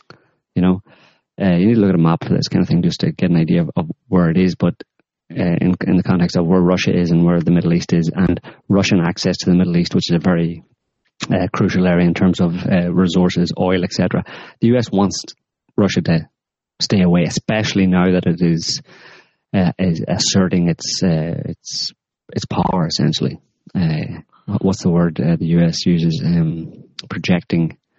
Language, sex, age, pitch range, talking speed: English, male, 30-49, 85-100 Hz, 200 wpm